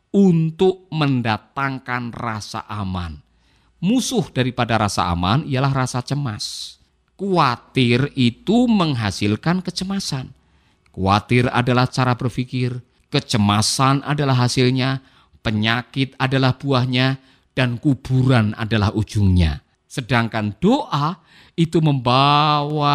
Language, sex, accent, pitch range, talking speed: Indonesian, male, native, 110-140 Hz, 85 wpm